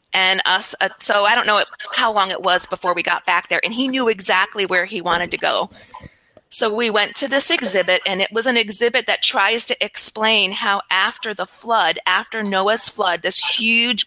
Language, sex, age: English, female, 30-49